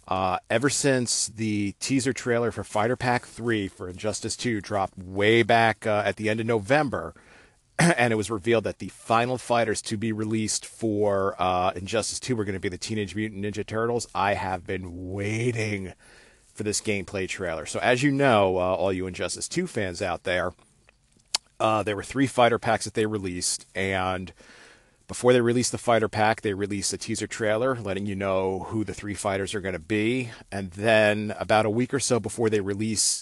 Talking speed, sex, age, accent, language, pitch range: 195 wpm, male, 40-59, American, English, 95-115 Hz